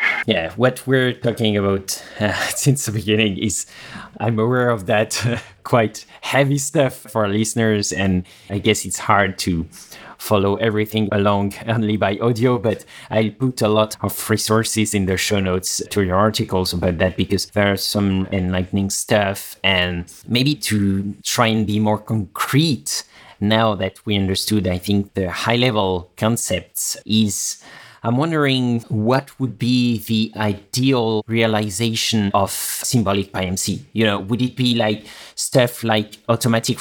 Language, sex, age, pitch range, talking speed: English, male, 30-49, 100-120 Hz, 150 wpm